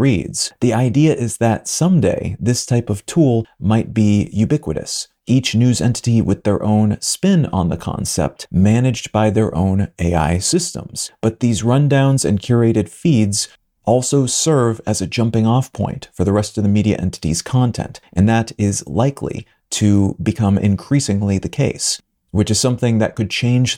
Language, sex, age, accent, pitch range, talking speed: English, male, 30-49, American, 105-125 Hz, 165 wpm